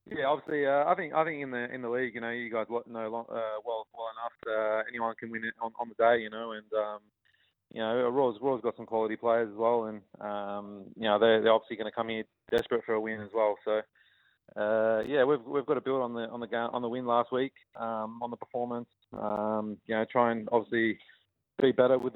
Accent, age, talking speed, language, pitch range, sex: Australian, 20-39, 250 wpm, English, 110-120 Hz, male